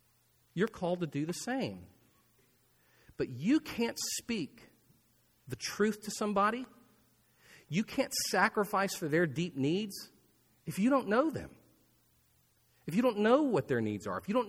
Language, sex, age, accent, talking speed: English, male, 40-59, American, 155 wpm